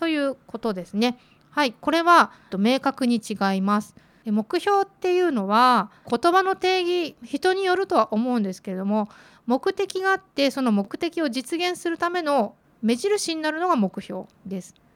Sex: female